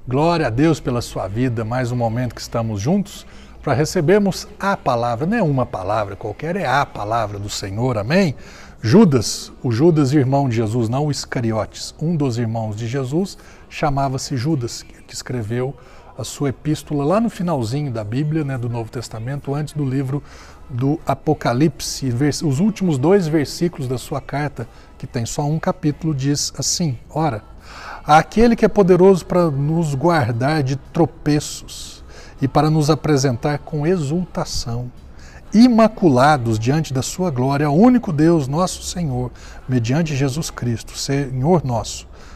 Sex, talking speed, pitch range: male, 150 wpm, 120-155 Hz